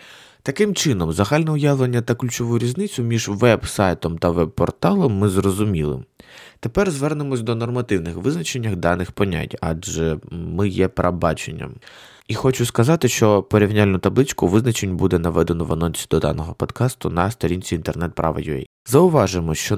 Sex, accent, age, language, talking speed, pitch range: male, native, 20-39, Ukrainian, 130 wpm, 90-120 Hz